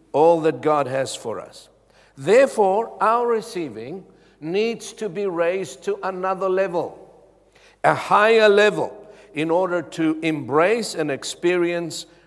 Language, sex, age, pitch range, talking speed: English, male, 60-79, 130-190 Hz, 120 wpm